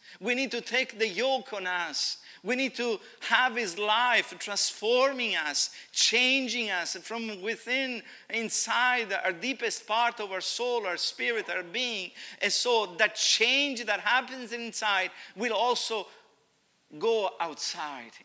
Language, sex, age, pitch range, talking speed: English, male, 50-69, 205-255 Hz, 140 wpm